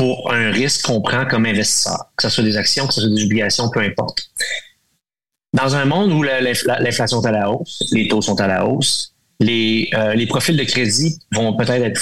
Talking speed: 215 wpm